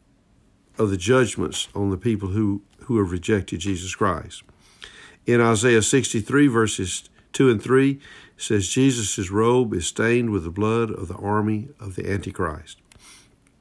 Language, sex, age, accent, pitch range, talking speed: English, male, 50-69, American, 100-120 Hz, 150 wpm